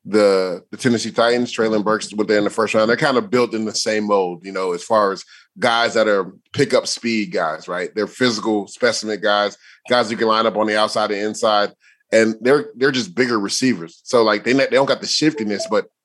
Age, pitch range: 30-49, 105-115 Hz